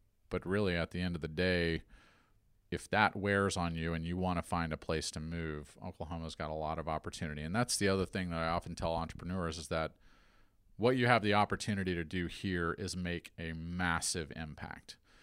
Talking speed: 210 wpm